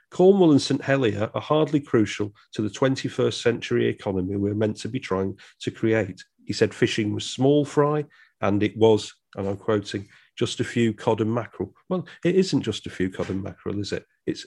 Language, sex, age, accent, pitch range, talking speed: English, male, 40-59, British, 100-150 Hz, 205 wpm